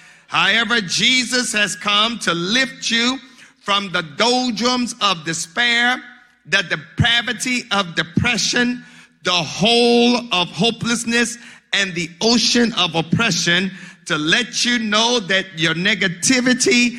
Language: English